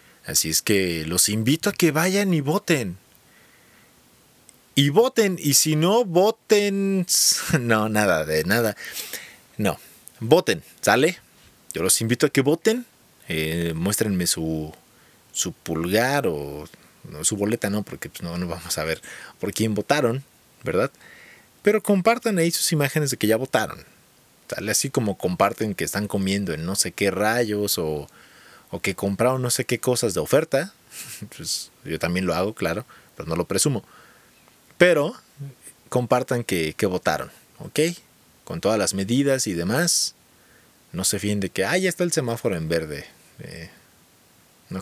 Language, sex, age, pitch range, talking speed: Spanish, male, 30-49, 100-160 Hz, 155 wpm